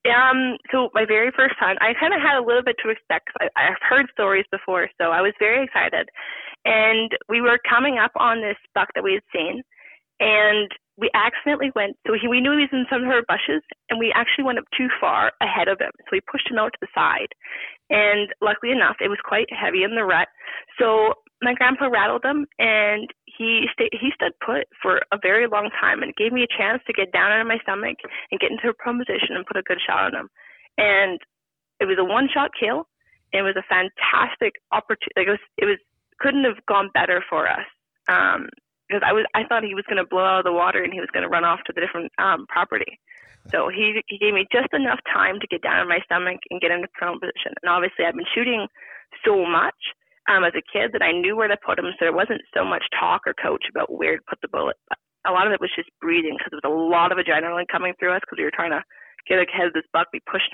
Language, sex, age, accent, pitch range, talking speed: English, female, 20-39, American, 195-265 Hz, 245 wpm